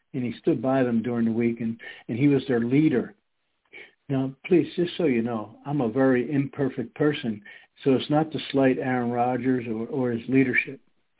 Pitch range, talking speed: 120-150 Hz, 195 wpm